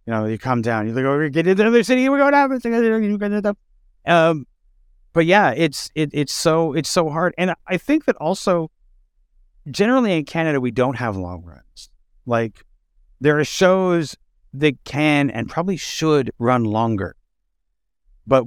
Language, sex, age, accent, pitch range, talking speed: English, male, 50-69, American, 110-155 Hz, 160 wpm